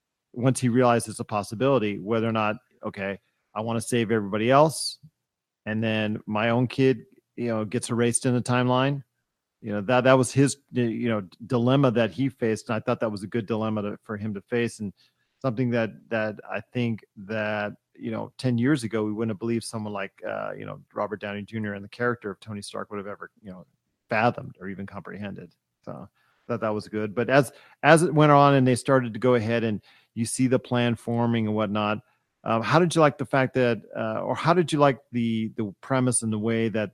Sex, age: male, 40-59